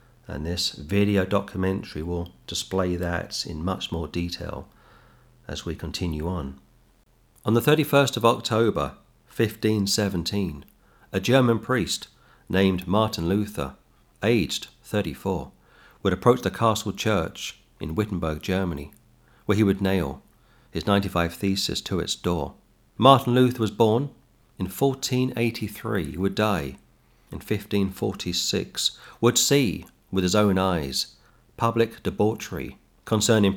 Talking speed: 120 wpm